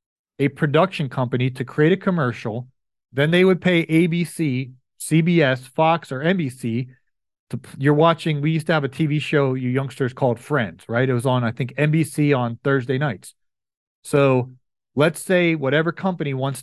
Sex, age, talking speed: male, 40-59, 165 wpm